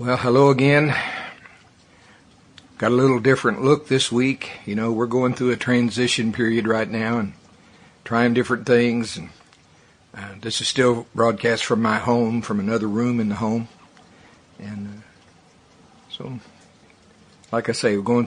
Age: 60-79